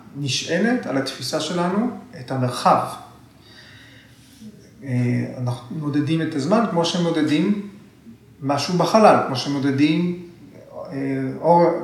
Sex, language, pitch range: male, Hebrew, 130-170 Hz